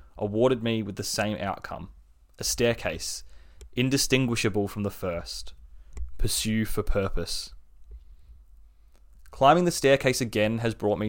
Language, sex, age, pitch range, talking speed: English, male, 20-39, 70-115 Hz, 120 wpm